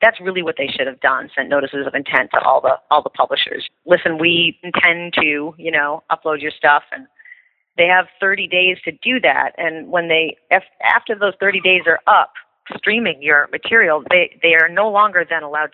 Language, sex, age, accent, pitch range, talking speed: English, female, 40-59, American, 150-195 Hz, 205 wpm